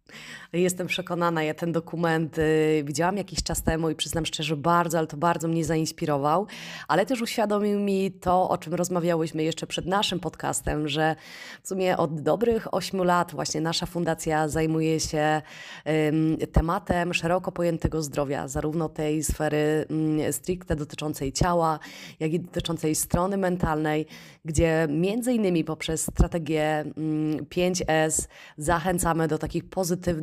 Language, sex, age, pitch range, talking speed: Polish, female, 20-39, 155-175 Hz, 140 wpm